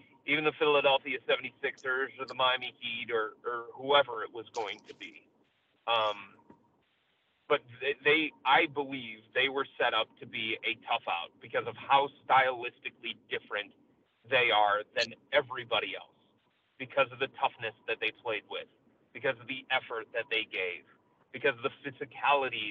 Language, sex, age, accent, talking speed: English, male, 30-49, American, 160 wpm